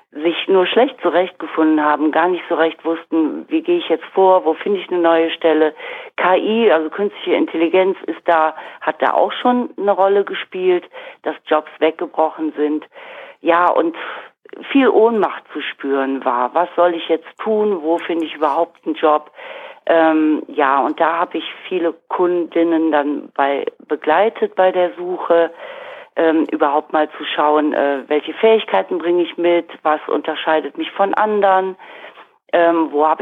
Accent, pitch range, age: German, 155-205 Hz, 40-59